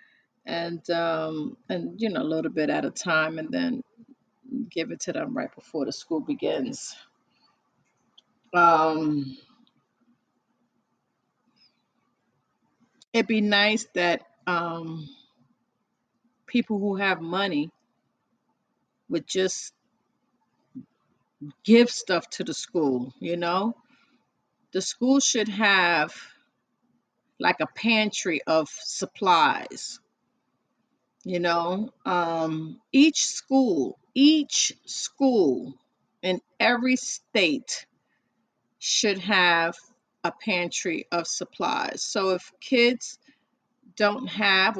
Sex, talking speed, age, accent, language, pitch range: female, 95 wpm, 30-49, American, English, 175-250 Hz